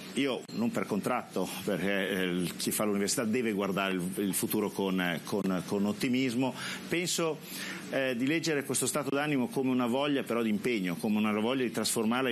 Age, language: 50-69, Italian